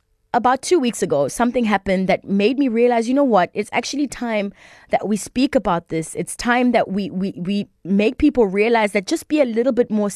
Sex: female